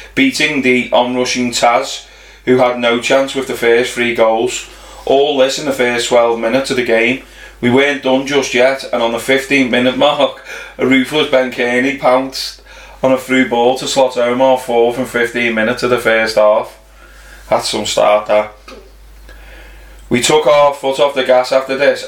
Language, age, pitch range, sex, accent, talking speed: English, 30-49, 115-130 Hz, male, British, 185 wpm